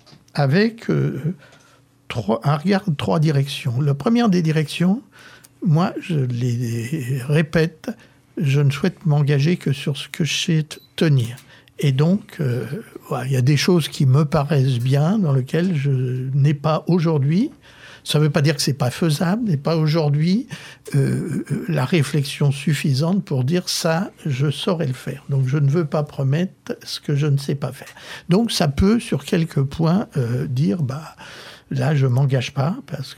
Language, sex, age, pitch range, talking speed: French, male, 60-79, 135-175 Hz, 175 wpm